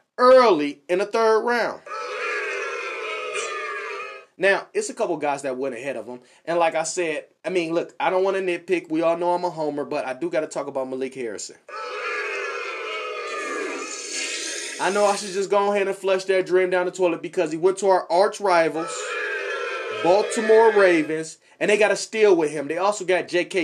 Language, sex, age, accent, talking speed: English, male, 30-49, American, 195 wpm